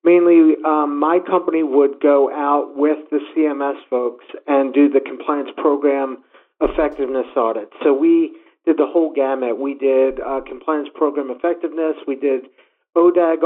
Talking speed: 145 wpm